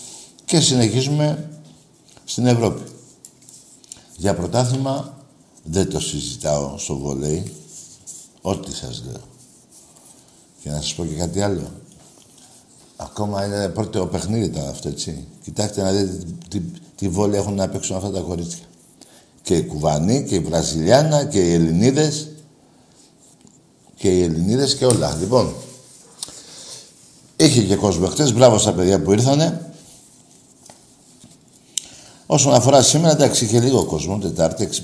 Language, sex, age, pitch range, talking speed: Greek, male, 60-79, 90-130 Hz, 125 wpm